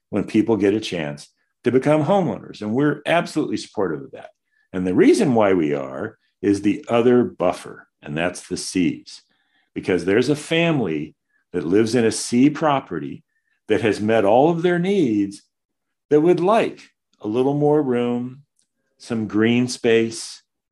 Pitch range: 100-145 Hz